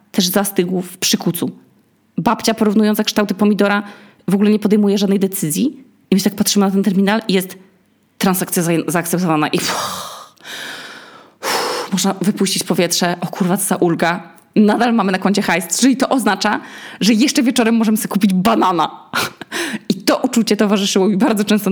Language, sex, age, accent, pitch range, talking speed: Polish, female, 20-39, native, 180-230 Hz, 165 wpm